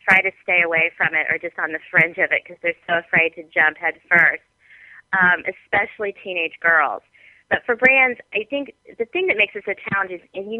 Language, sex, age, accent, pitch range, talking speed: English, female, 30-49, American, 170-200 Hz, 220 wpm